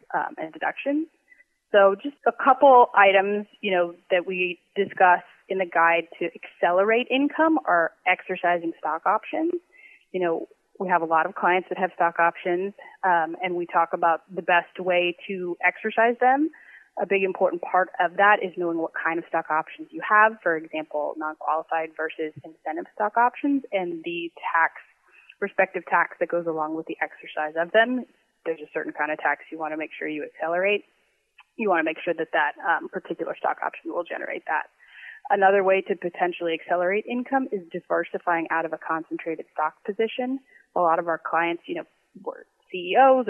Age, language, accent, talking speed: 20-39, English, American, 180 wpm